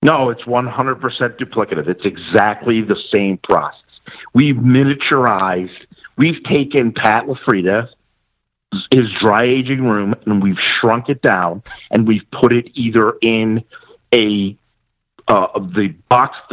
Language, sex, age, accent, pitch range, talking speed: English, male, 50-69, American, 110-140 Hz, 120 wpm